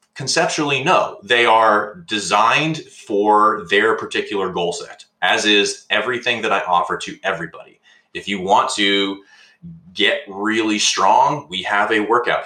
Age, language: 30-49, English